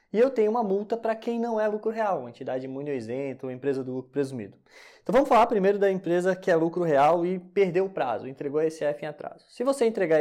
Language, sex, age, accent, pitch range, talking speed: Portuguese, male, 20-39, Brazilian, 155-210 Hz, 240 wpm